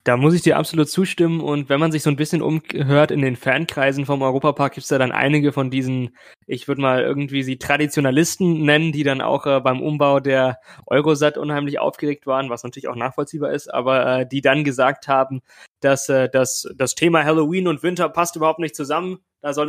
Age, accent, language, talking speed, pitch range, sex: 20-39, German, German, 210 wpm, 135-155 Hz, male